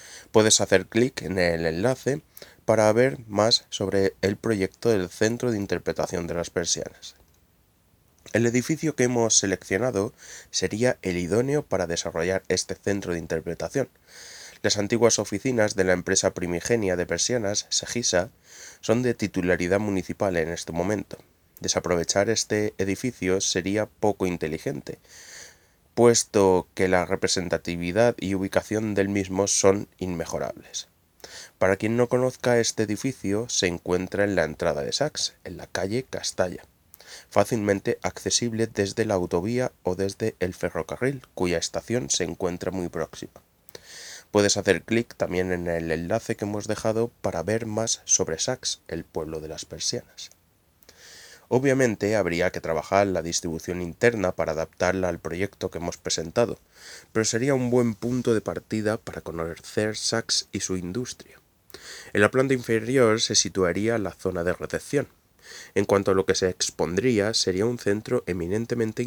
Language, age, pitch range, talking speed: Spanish, 20-39, 90-115 Hz, 145 wpm